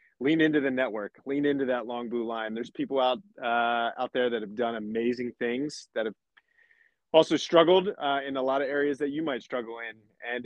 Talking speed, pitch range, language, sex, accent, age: 210 wpm, 115-140 Hz, English, male, American, 30-49